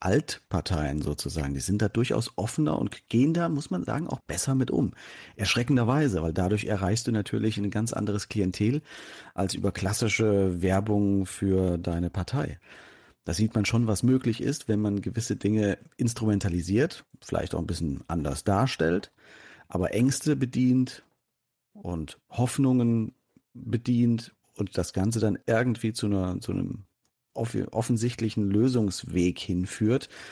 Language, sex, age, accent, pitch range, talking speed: German, male, 40-59, German, 95-120 Hz, 135 wpm